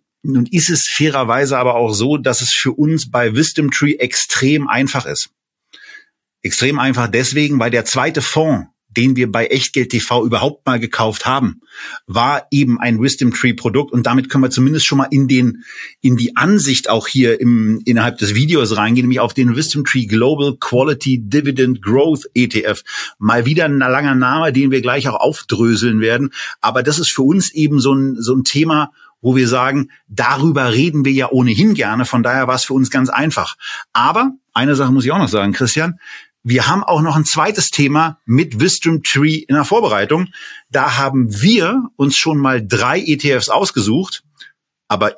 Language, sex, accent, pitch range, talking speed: German, male, German, 120-150 Hz, 185 wpm